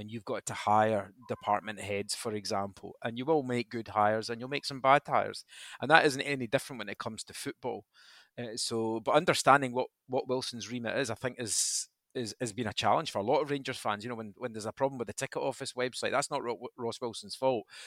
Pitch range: 110-130 Hz